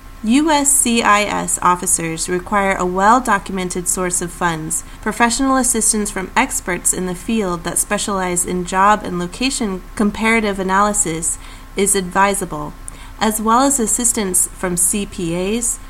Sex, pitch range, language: female, 180-230 Hz, English